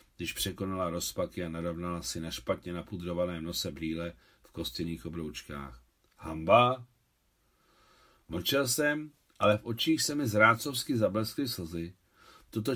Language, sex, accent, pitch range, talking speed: Czech, male, native, 90-140 Hz, 120 wpm